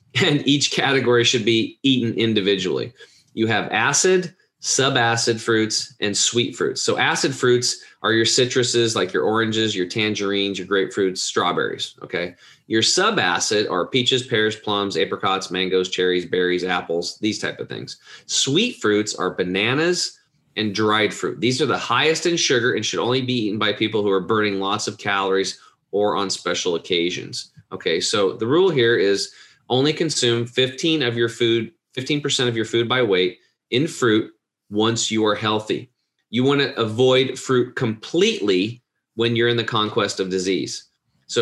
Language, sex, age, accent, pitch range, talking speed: English, male, 30-49, American, 105-130 Hz, 165 wpm